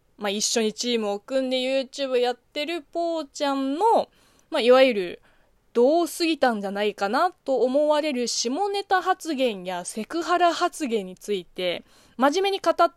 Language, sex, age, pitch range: Japanese, female, 20-39, 225-370 Hz